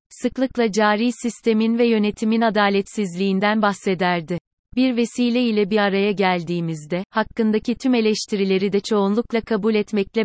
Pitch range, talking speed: 195-225 Hz, 115 wpm